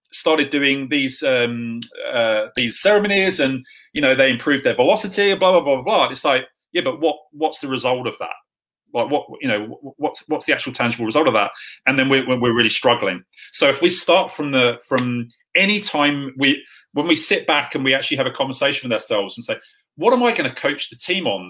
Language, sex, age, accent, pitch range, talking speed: English, male, 30-49, British, 125-155 Hz, 220 wpm